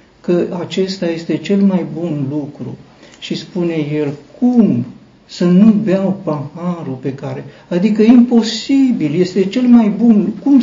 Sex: male